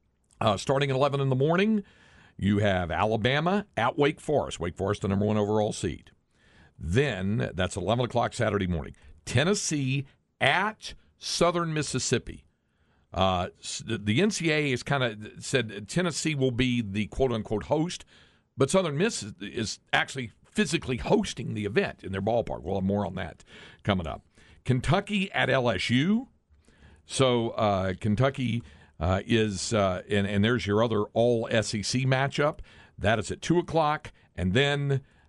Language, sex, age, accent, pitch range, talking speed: English, male, 50-69, American, 90-135 Hz, 150 wpm